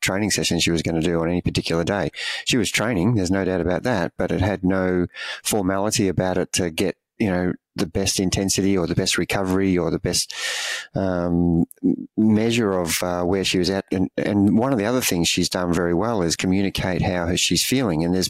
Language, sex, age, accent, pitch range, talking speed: English, male, 30-49, Australian, 90-100 Hz, 215 wpm